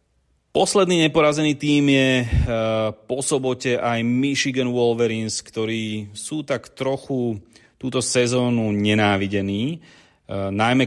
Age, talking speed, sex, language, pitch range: 30-49, 95 wpm, male, Slovak, 100-115 Hz